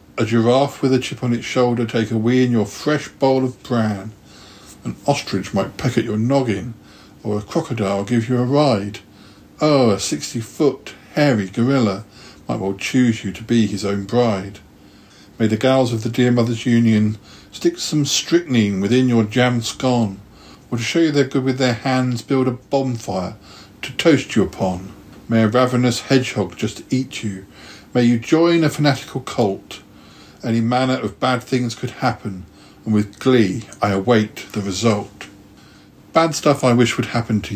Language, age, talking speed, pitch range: English, 60-79, 175 wpm, 100-125 Hz